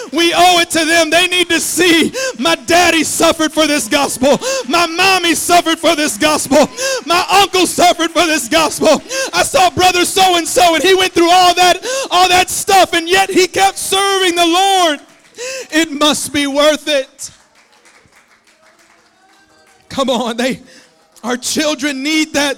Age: 40-59